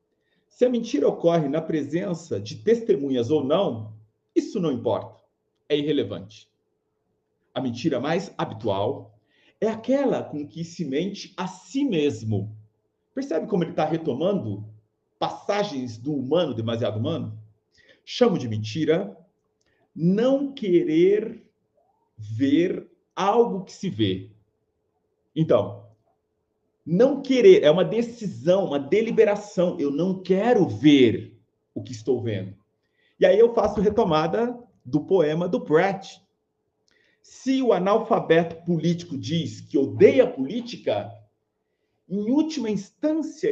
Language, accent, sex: English, Brazilian, male